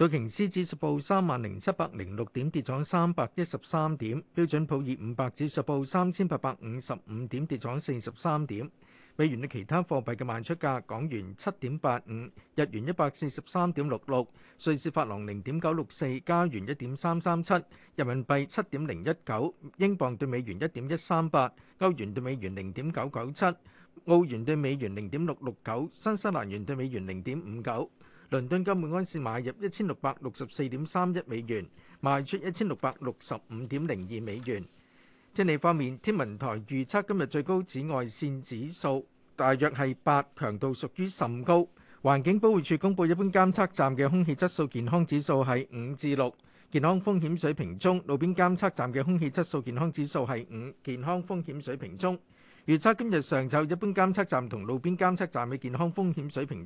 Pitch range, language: 130-175 Hz, Chinese